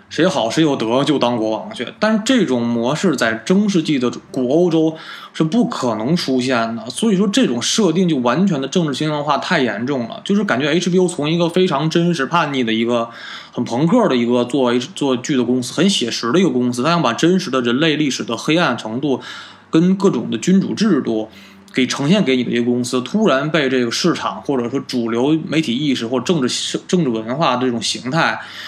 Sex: male